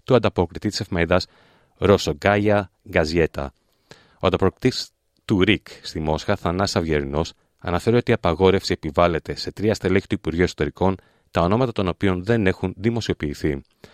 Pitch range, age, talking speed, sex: 80-110 Hz, 30-49, 140 wpm, male